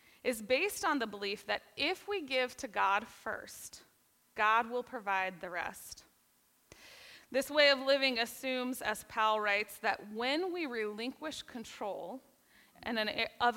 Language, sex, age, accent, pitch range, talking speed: English, female, 20-39, American, 215-275 Hz, 135 wpm